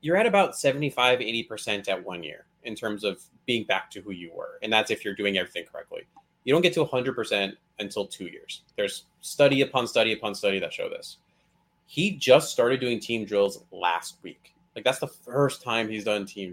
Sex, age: male, 30-49